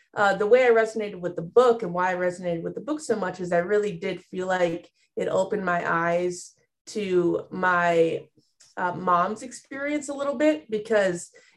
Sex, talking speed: female, 185 wpm